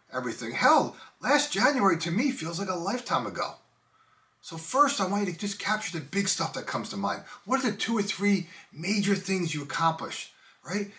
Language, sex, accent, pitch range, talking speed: English, male, American, 165-205 Hz, 200 wpm